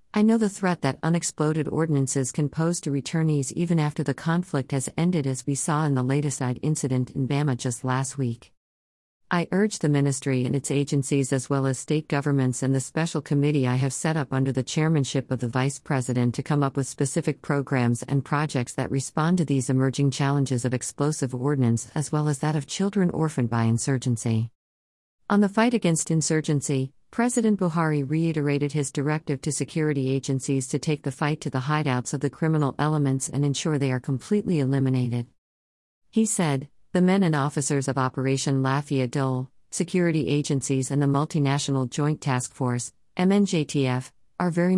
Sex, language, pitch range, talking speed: female, English, 130-155 Hz, 180 wpm